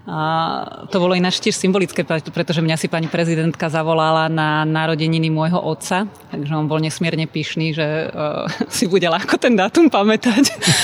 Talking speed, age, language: 155 wpm, 30-49, Czech